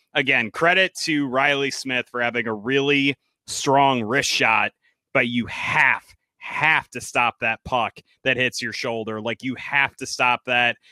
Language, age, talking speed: English, 30-49, 165 wpm